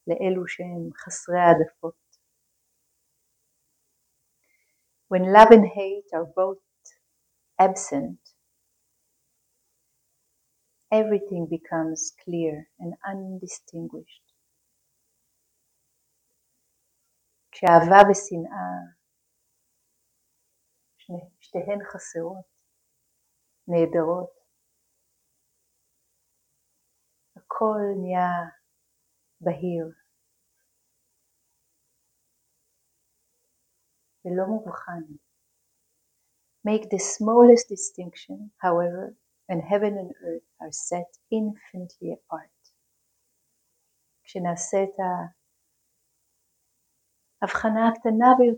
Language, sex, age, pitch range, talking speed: Hebrew, female, 50-69, 170-200 Hz, 40 wpm